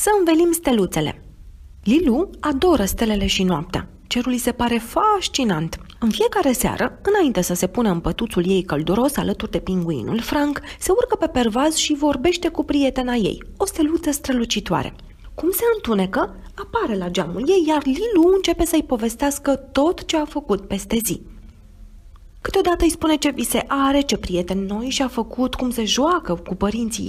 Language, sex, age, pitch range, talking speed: Romanian, female, 30-49, 190-310 Hz, 165 wpm